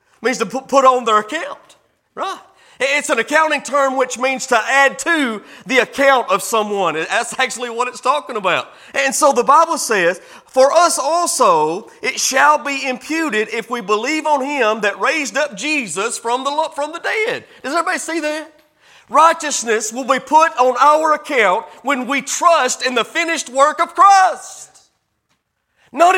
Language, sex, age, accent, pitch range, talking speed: English, male, 40-59, American, 255-335 Hz, 165 wpm